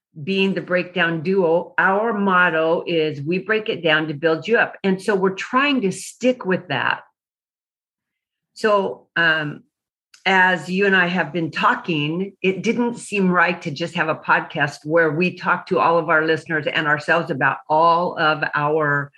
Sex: female